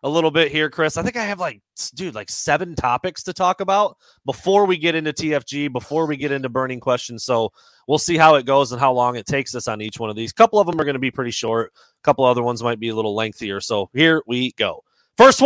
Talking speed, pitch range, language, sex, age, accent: 265 wpm, 125-165 Hz, English, male, 30-49, American